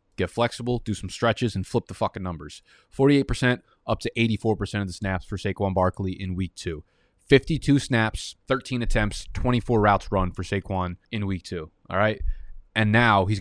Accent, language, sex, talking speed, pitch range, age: American, English, male, 185 wpm, 95-115 Hz, 20-39